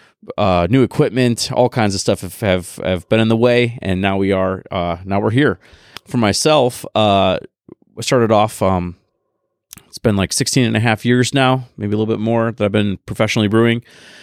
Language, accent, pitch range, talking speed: English, American, 95-115 Hz, 205 wpm